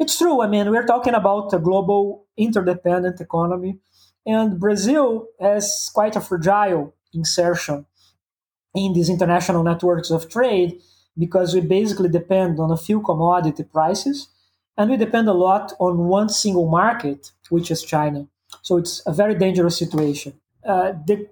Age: 20-39